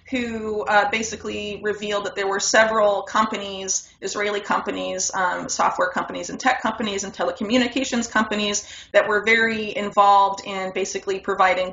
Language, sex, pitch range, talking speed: English, female, 185-215 Hz, 140 wpm